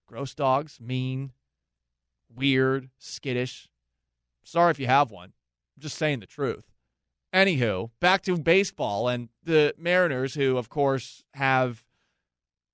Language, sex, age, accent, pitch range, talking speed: English, male, 30-49, American, 125-160 Hz, 120 wpm